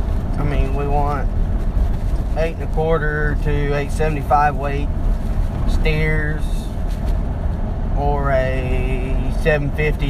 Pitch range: 75-95 Hz